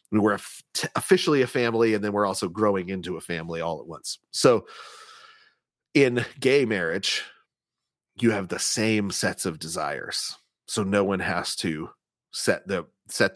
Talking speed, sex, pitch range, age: 155 wpm, male, 95-115 Hz, 30-49